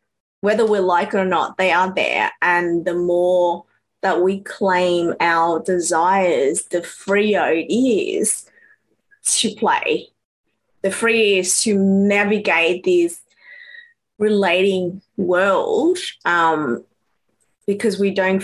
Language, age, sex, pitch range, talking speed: English, 20-39, female, 185-230 Hz, 115 wpm